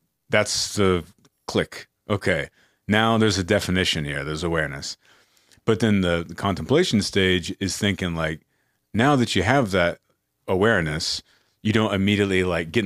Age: 30-49